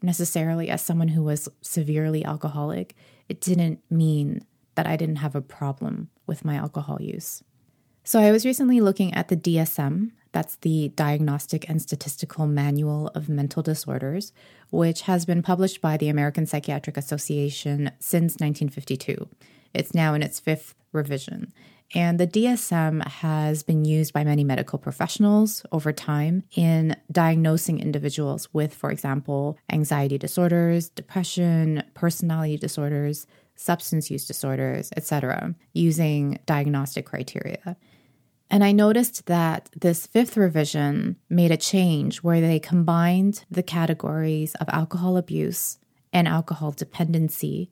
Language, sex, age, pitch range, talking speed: English, female, 20-39, 145-175 Hz, 130 wpm